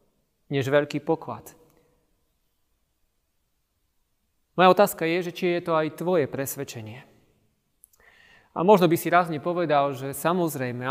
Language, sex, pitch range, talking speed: Slovak, male, 130-165 Hz, 115 wpm